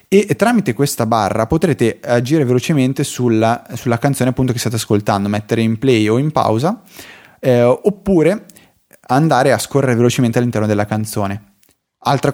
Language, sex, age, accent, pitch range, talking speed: Italian, male, 20-39, native, 110-135 Hz, 145 wpm